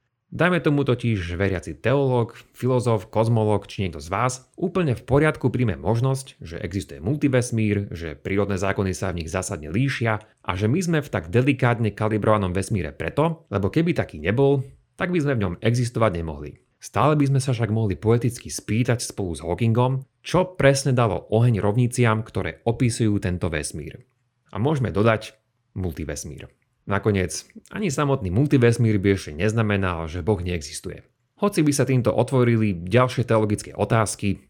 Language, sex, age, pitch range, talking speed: Slovak, male, 30-49, 100-130 Hz, 155 wpm